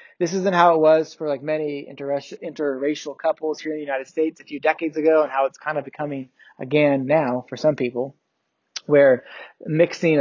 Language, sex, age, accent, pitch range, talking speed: English, male, 20-39, American, 140-165 Hz, 190 wpm